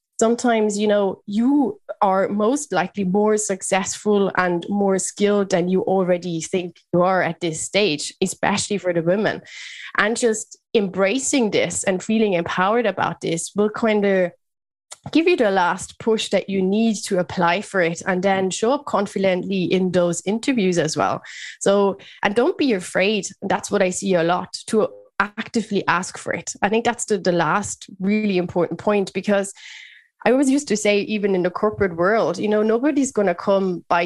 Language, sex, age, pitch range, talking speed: English, female, 20-39, 180-220 Hz, 180 wpm